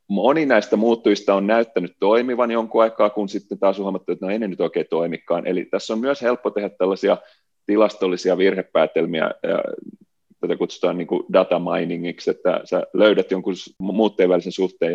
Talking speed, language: 165 wpm, Finnish